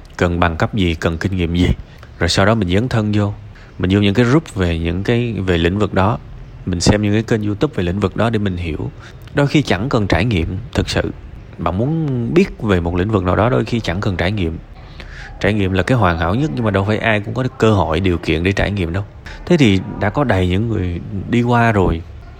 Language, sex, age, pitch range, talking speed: Vietnamese, male, 20-39, 90-115 Hz, 255 wpm